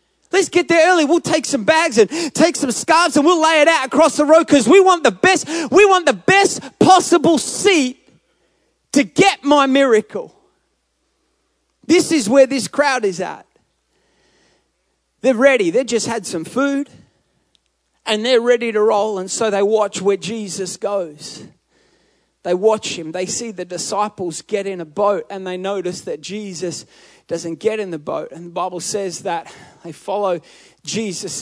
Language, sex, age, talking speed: English, male, 30-49, 165 wpm